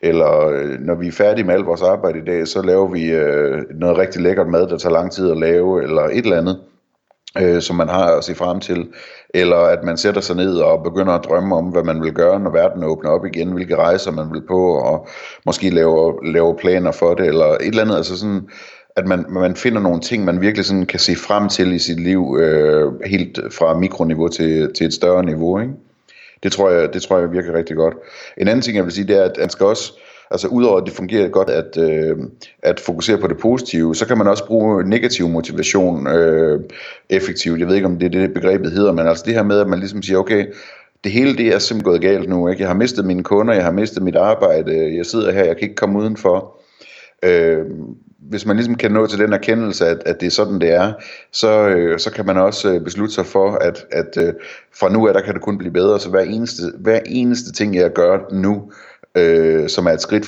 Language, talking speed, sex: Danish, 240 wpm, male